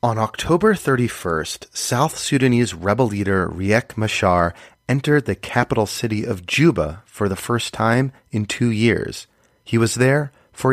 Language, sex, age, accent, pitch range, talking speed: English, male, 30-49, American, 110-150 Hz, 145 wpm